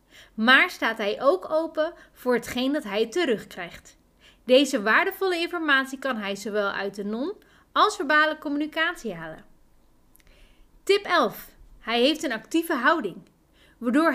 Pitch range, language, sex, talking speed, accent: 215-315 Hz, Dutch, female, 130 wpm, Dutch